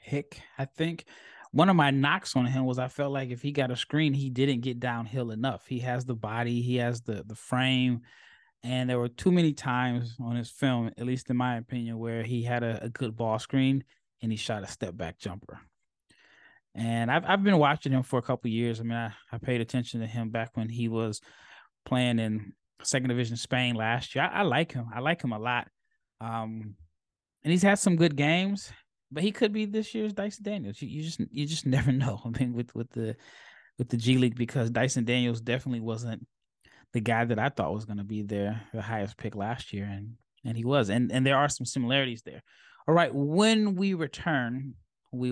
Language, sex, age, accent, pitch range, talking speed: English, male, 20-39, American, 115-140 Hz, 220 wpm